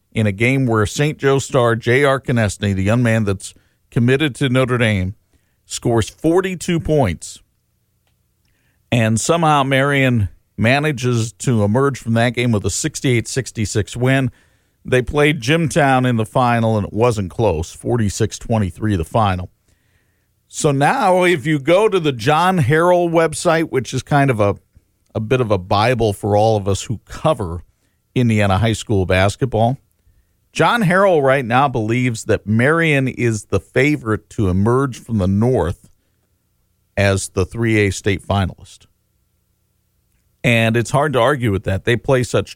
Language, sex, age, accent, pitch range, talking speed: English, male, 50-69, American, 100-130 Hz, 150 wpm